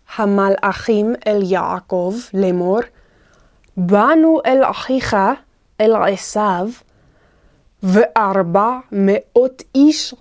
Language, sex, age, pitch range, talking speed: Hebrew, female, 20-39, 195-255 Hz, 70 wpm